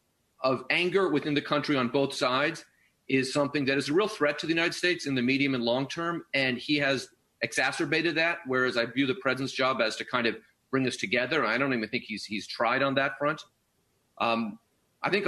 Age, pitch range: 40-59, 125-155 Hz